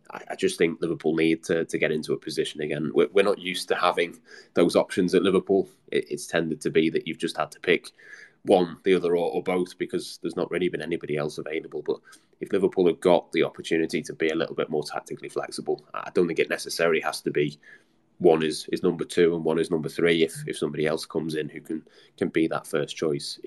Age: 20-39